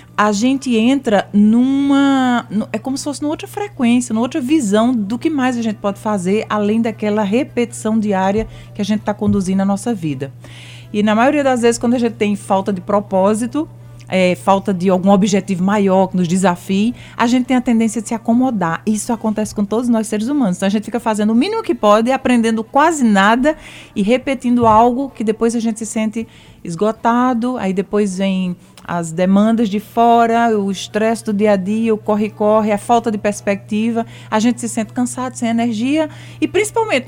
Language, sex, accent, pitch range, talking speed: Portuguese, female, Brazilian, 190-235 Hz, 190 wpm